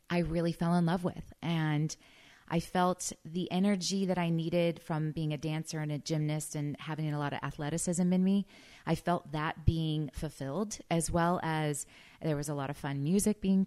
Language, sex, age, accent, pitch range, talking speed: English, female, 30-49, American, 145-170 Hz, 200 wpm